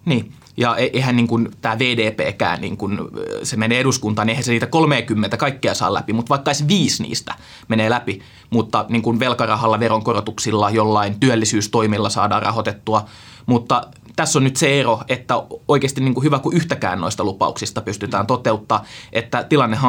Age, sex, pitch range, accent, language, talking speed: 20-39, male, 110-130 Hz, native, Finnish, 165 wpm